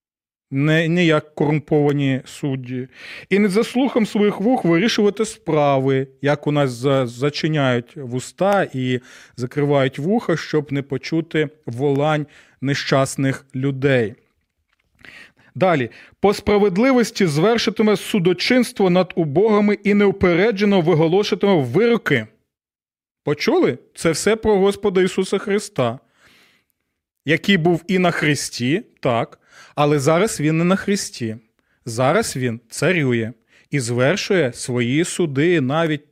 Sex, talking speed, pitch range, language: male, 105 wpm, 140-205 Hz, Ukrainian